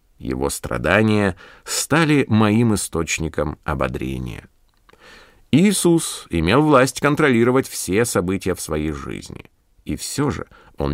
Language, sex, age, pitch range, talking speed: Russian, male, 50-69, 85-125 Hz, 105 wpm